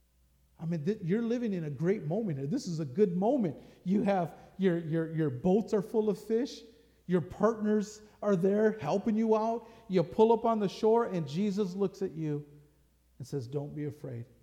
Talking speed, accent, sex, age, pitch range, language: 185 wpm, American, male, 50-69, 125-160 Hz, English